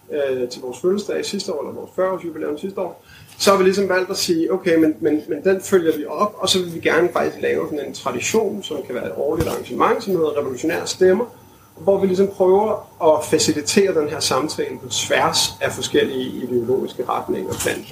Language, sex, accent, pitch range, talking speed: Danish, male, native, 150-220 Hz, 215 wpm